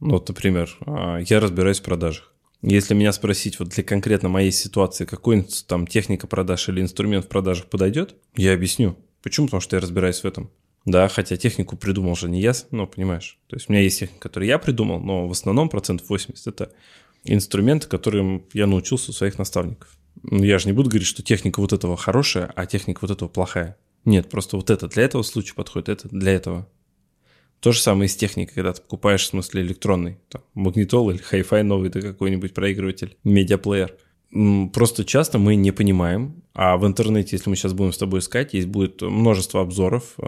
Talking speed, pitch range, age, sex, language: 195 wpm, 95-110 Hz, 20-39, male, Russian